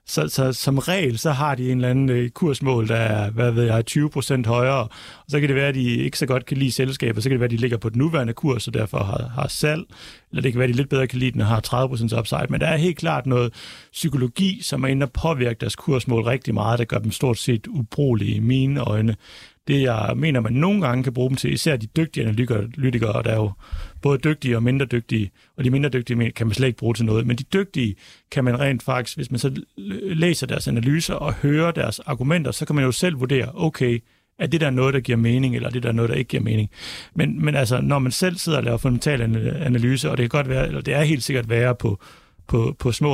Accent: native